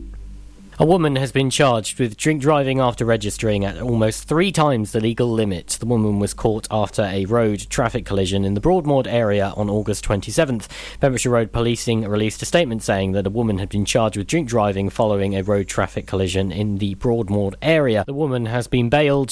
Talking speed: 195 wpm